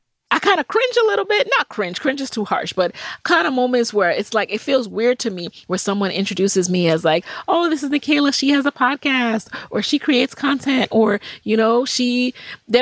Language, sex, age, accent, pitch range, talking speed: English, female, 30-49, American, 185-265 Hz, 220 wpm